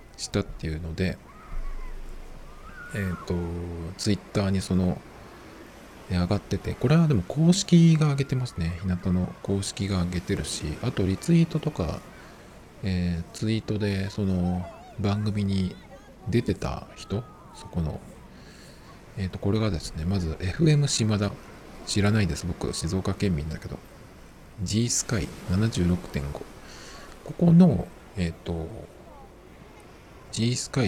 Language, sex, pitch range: Japanese, male, 90-120 Hz